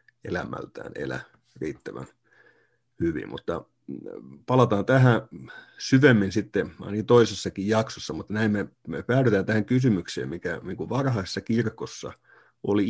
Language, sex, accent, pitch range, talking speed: Finnish, male, native, 100-125 Hz, 110 wpm